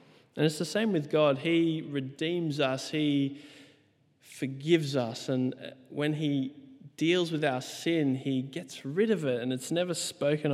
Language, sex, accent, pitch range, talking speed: English, male, Australian, 125-155 Hz, 160 wpm